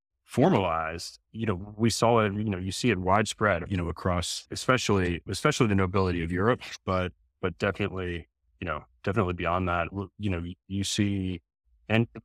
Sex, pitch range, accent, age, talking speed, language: male, 90-100 Hz, American, 30-49, 165 wpm, English